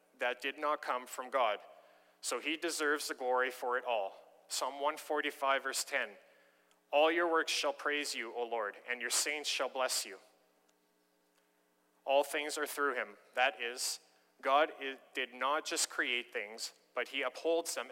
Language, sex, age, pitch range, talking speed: English, male, 30-49, 120-150 Hz, 165 wpm